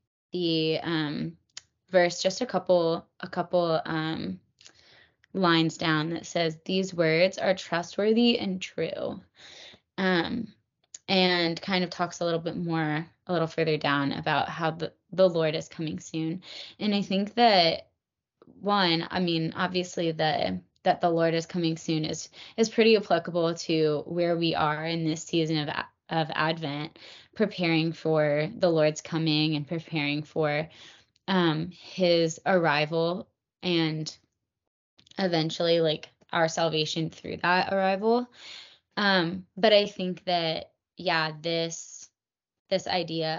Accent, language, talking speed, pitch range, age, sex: American, English, 135 wpm, 160-185 Hz, 20-39, female